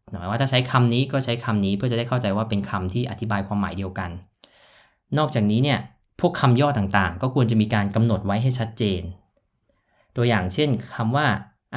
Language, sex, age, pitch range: Thai, male, 20-39, 100-125 Hz